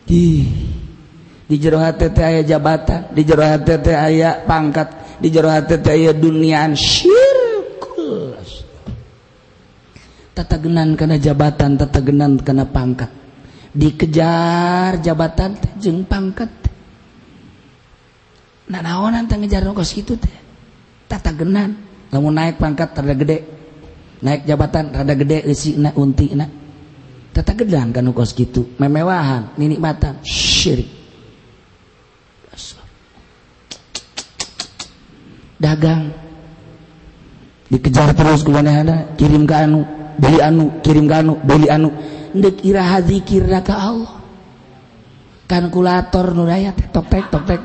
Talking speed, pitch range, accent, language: 90 wpm, 145-180 Hz, native, Indonesian